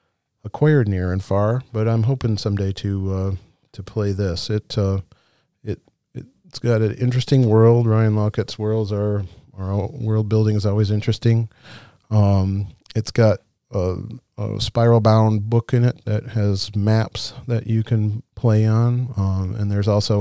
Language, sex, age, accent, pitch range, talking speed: English, male, 40-59, American, 100-115 Hz, 155 wpm